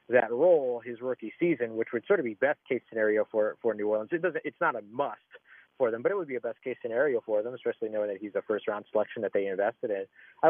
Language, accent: English, American